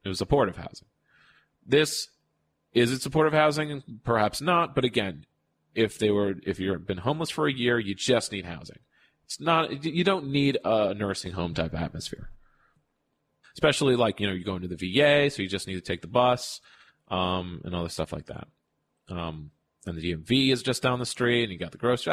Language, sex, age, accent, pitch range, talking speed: English, male, 30-49, American, 100-155 Hz, 205 wpm